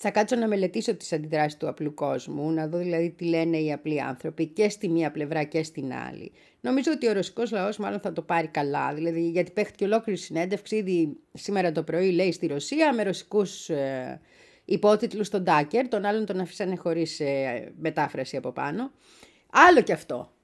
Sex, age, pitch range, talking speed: female, 30-49, 165-250 Hz, 190 wpm